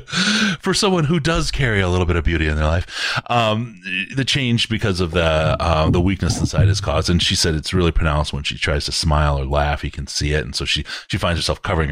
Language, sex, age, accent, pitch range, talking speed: English, male, 30-49, American, 75-100 Hz, 245 wpm